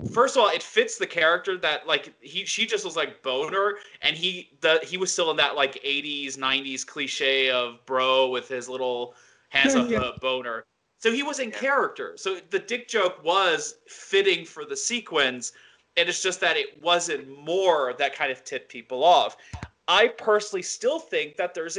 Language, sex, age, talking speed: English, male, 30-49, 190 wpm